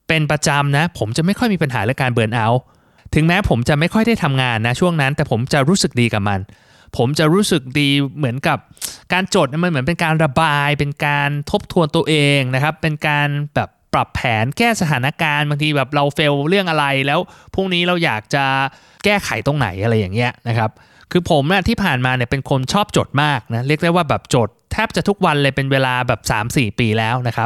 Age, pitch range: 20-39, 120-160 Hz